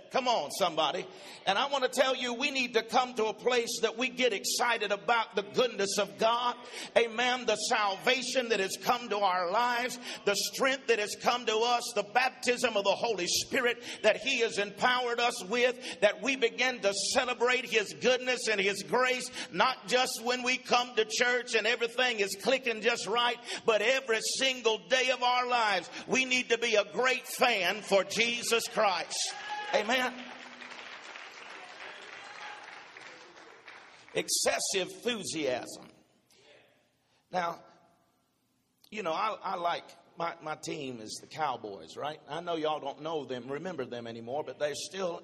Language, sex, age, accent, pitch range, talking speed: English, male, 50-69, American, 200-250 Hz, 160 wpm